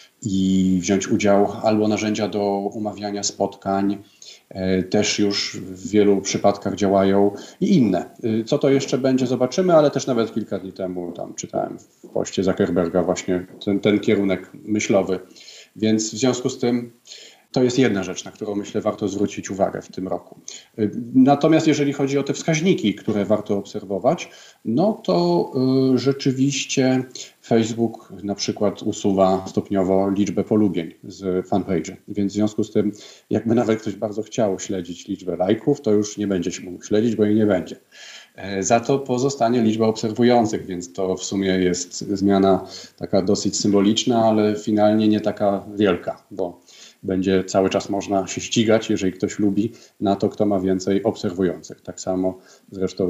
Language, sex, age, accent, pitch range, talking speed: Polish, male, 40-59, native, 95-110 Hz, 155 wpm